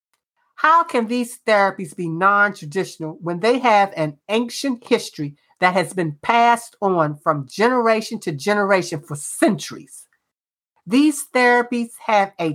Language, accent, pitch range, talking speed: English, American, 170-230 Hz, 130 wpm